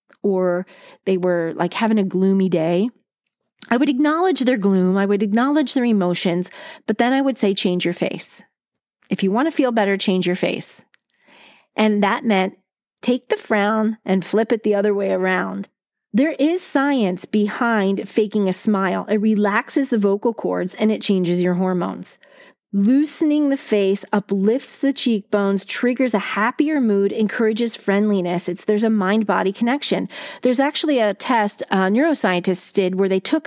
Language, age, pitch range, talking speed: English, 30-49, 200-280 Hz, 165 wpm